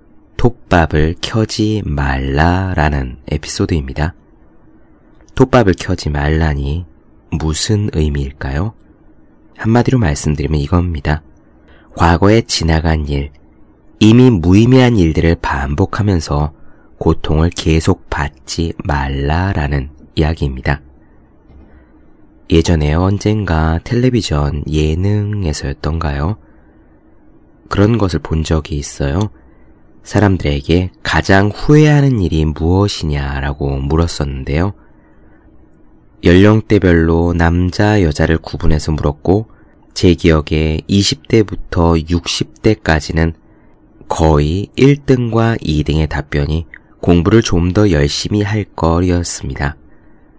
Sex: male